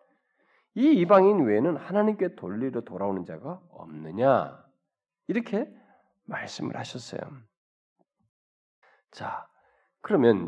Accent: native